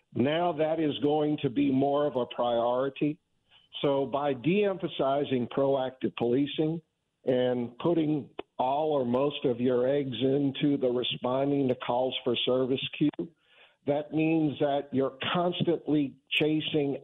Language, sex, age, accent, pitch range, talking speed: English, male, 50-69, American, 130-155 Hz, 130 wpm